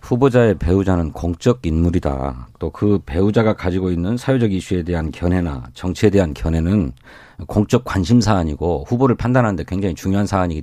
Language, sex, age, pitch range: Korean, male, 40-59, 90-130 Hz